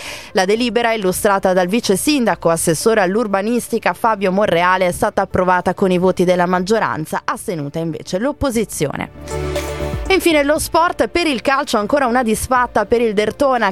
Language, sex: Italian, female